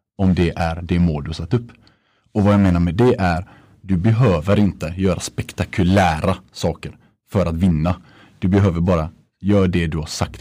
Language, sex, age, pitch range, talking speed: Swedish, male, 30-49, 85-110 Hz, 190 wpm